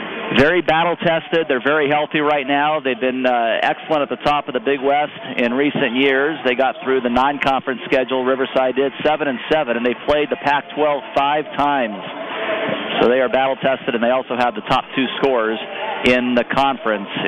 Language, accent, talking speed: English, American, 195 wpm